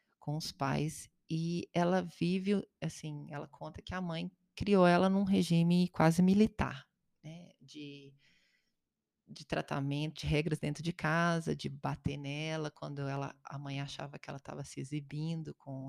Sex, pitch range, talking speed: female, 145-175 Hz, 155 wpm